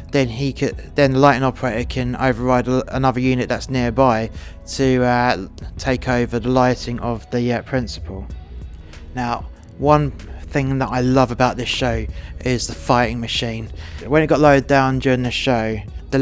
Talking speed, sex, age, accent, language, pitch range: 165 wpm, male, 20-39, British, English, 110-130 Hz